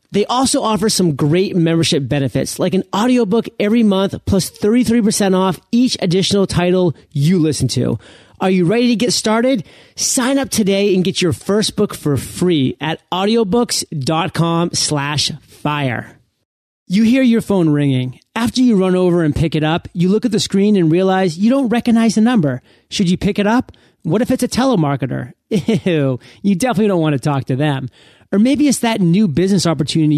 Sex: male